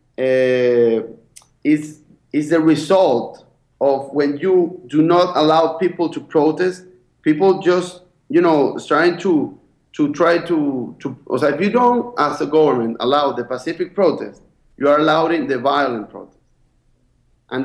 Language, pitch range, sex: English, 140-185 Hz, male